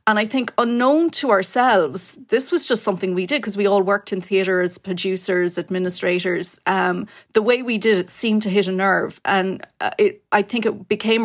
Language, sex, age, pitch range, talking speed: English, female, 30-49, 185-210 Hz, 205 wpm